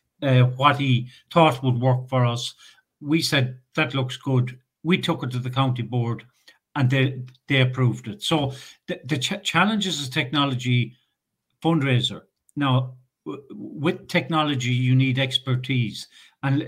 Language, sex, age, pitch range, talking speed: English, male, 60-79, 125-150 Hz, 150 wpm